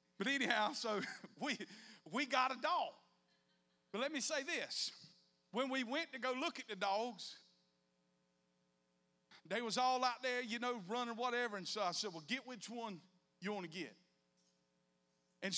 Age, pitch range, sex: 50-69, 160-225 Hz, male